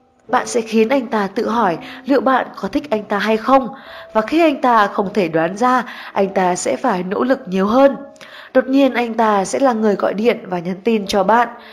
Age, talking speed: 20-39, 230 wpm